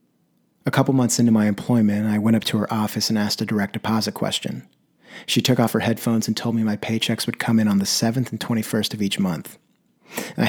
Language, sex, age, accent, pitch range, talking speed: English, male, 30-49, American, 105-125 Hz, 230 wpm